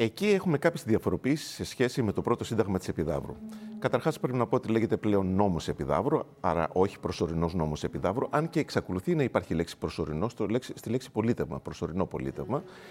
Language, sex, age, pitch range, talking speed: Greek, male, 40-59, 90-150 Hz, 175 wpm